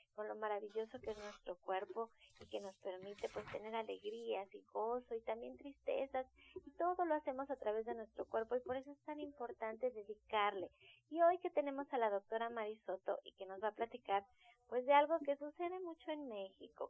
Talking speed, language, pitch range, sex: 200 wpm, Spanish, 195-270 Hz, female